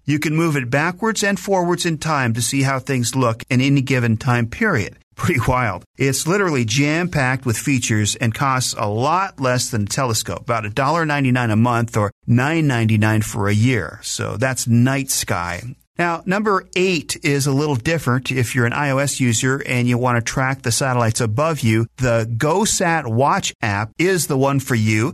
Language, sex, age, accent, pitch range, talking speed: English, male, 40-59, American, 120-155 Hz, 185 wpm